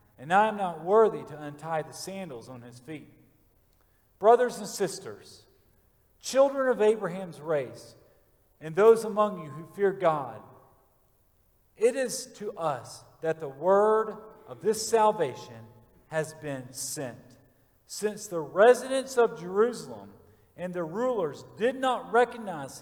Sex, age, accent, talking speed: male, 50-69, American, 130 wpm